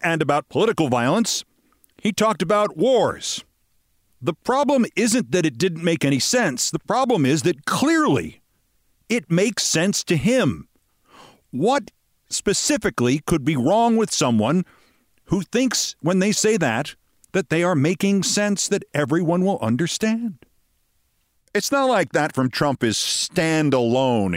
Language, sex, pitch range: English, male, 130-215 Hz